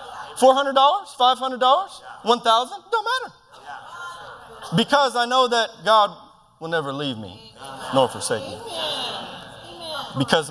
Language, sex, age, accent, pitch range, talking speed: English, male, 30-49, American, 115-170 Hz, 105 wpm